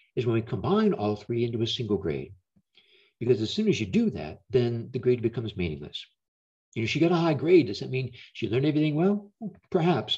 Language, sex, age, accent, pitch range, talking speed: English, male, 60-79, American, 125-165 Hz, 220 wpm